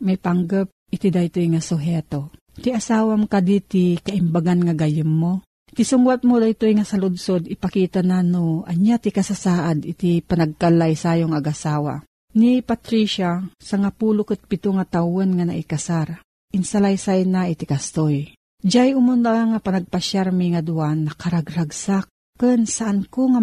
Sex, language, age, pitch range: female, Filipino, 40-59, 175-220 Hz